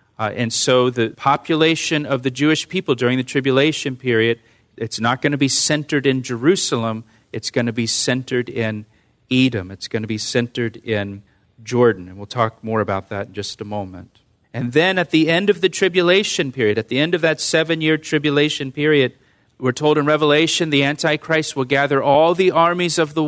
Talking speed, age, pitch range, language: 195 wpm, 40-59, 115-155 Hz, English